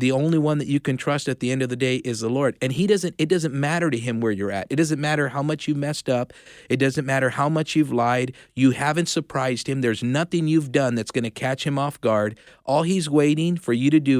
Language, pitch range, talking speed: English, 115-140 Hz, 270 wpm